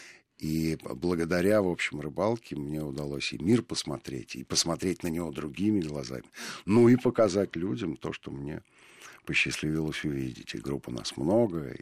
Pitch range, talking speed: 75-100 Hz, 145 wpm